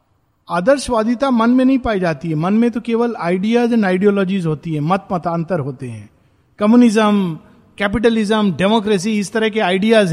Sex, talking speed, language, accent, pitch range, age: male, 160 wpm, Hindi, native, 170-225 Hz, 50-69